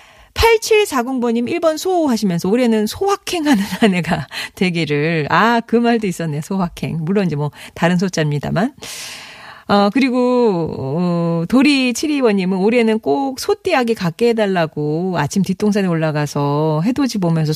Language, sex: Korean, female